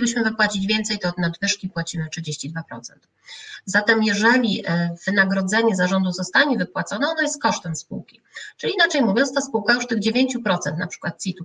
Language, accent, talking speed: Polish, native, 150 wpm